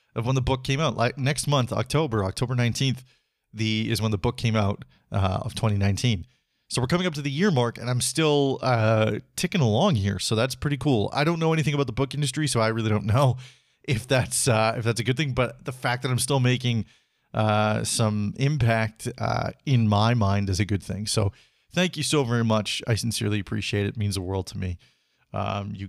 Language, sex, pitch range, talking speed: English, male, 105-130 Hz, 225 wpm